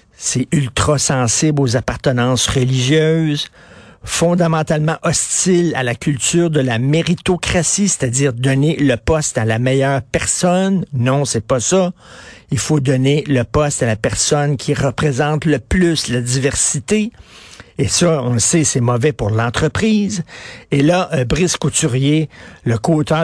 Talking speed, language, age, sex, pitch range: 145 wpm, French, 50-69, male, 130-165 Hz